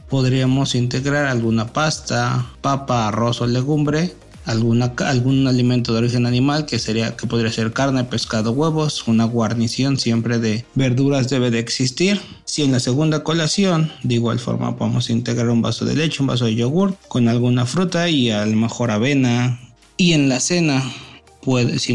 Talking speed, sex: 160 wpm, male